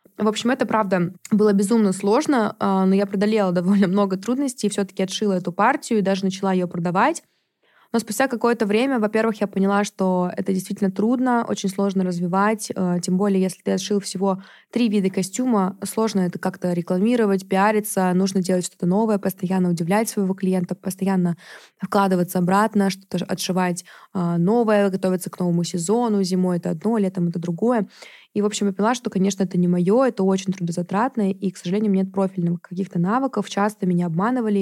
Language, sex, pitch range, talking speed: Russian, female, 185-215 Hz, 170 wpm